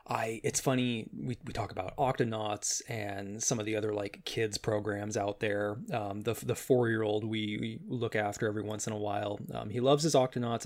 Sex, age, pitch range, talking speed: male, 20-39, 105-130 Hz, 205 wpm